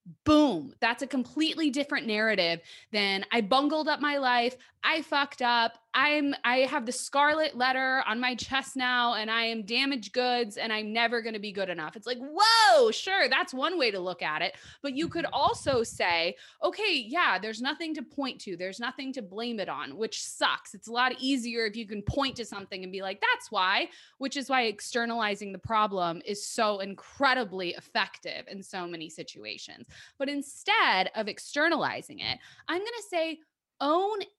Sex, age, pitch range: female, 20-39, 215-295 Hz